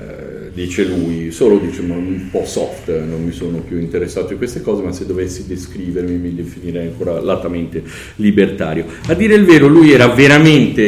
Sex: male